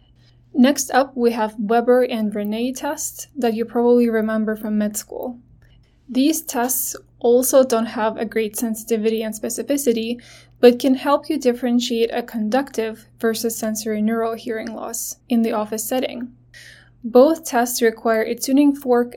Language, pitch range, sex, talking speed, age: English, 220-250 Hz, female, 145 wpm, 20-39